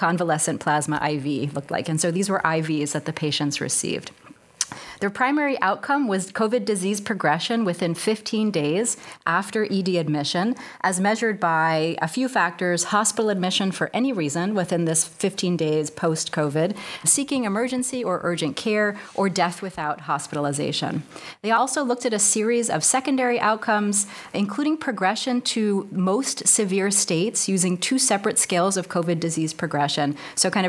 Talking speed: 150 wpm